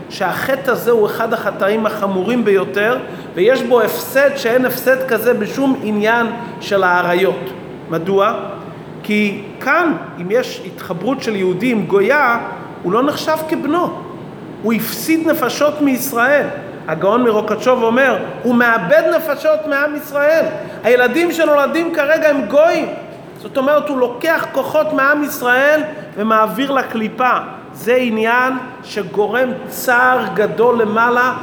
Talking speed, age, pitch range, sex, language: 120 wpm, 30-49, 210-275 Hz, male, Hebrew